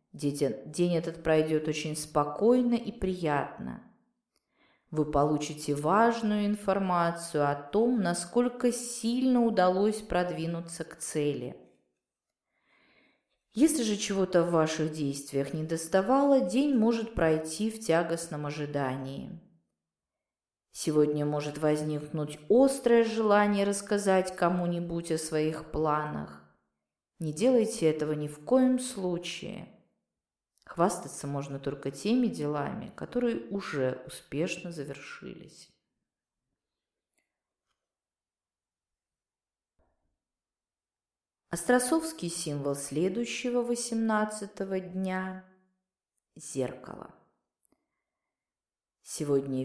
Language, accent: Russian, native